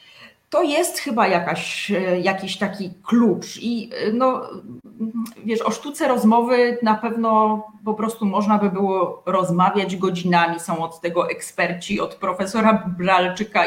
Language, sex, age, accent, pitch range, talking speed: Polish, female, 30-49, native, 175-225 Hz, 125 wpm